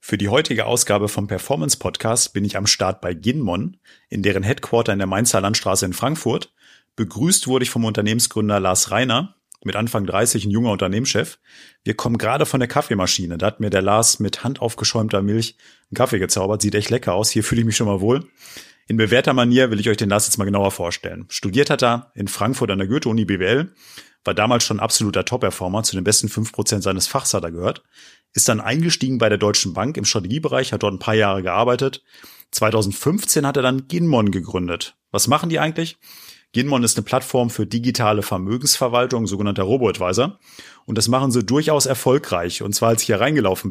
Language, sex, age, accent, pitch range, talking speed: German, male, 30-49, German, 100-125 Hz, 195 wpm